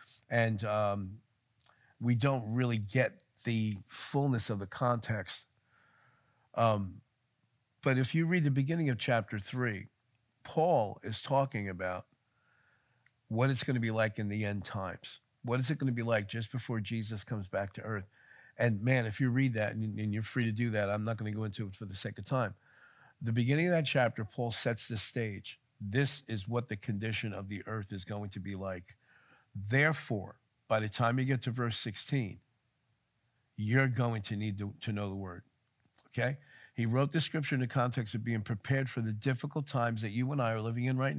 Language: English